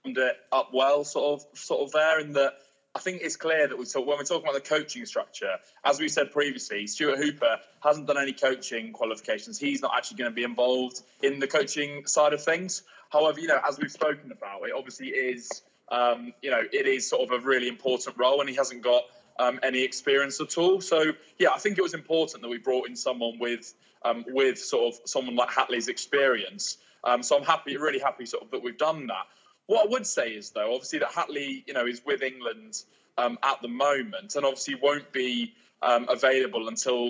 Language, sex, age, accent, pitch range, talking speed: English, male, 20-39, British, 125-165 Hz, 220 wpm